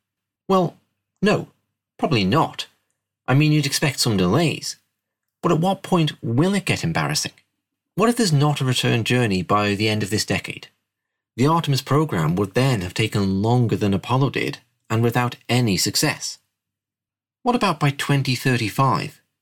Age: 30-49